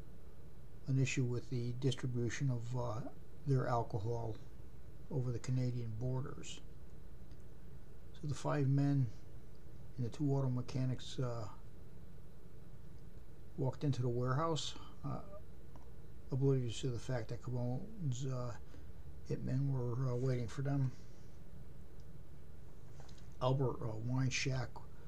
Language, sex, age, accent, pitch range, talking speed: English, male, 60-79, American, 115-135 Hz, 105 wpm